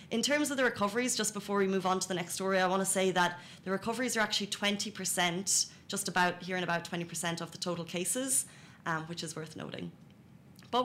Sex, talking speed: female, 220 wpm